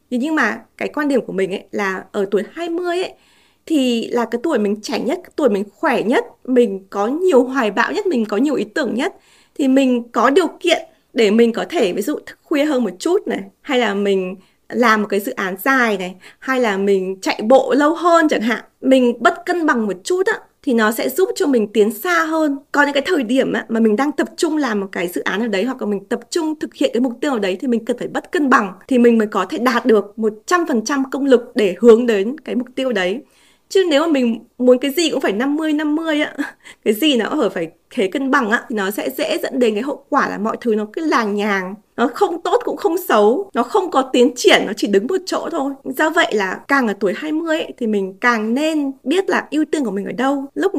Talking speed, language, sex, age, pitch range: 255 wpm, Vietnamese, female, 20-39, 215-305 Hz